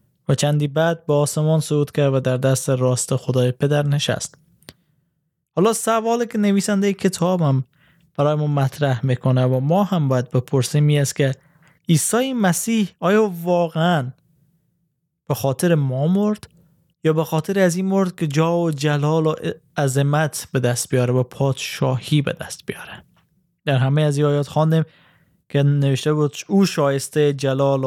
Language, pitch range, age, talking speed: Persian, 135-165 Hz, 20-39, 155 wpm